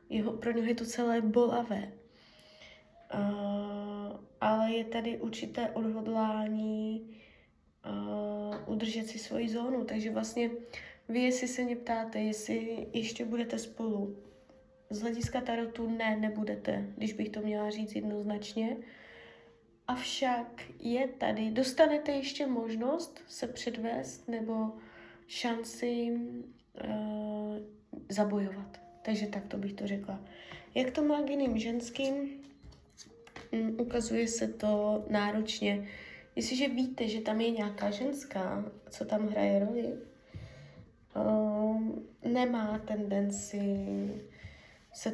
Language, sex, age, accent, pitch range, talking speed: Czech, female, 20-39, native, 205-235 Hz, 105 wpm